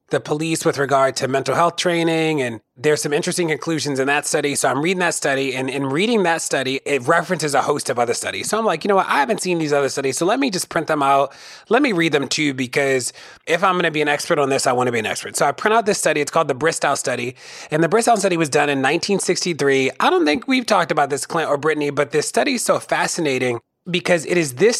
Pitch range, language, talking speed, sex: 140-170 Hz, English, 270 wpm, male